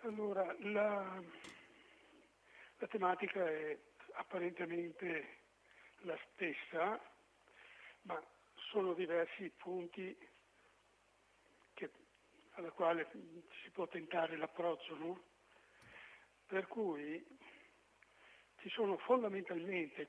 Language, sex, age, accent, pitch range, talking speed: Italian, male, 60-79, native, 170-230 Hz, 70 wpm